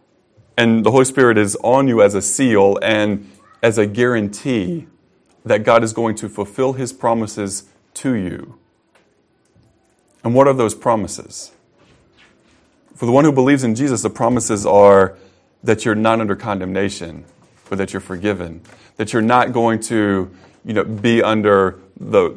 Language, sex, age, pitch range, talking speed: English, male, 30-49, 95-115 Hz, 155 wpm